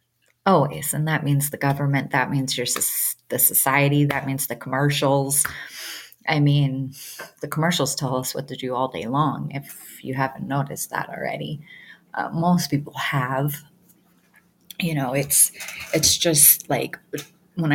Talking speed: 145 wpm